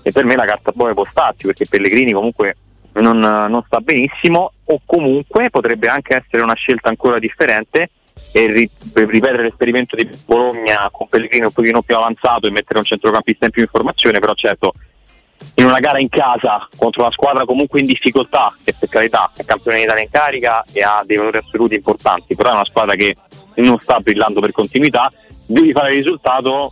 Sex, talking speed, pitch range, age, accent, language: male, 190 wpm, 105-125 Hz, 30-49, native, Italian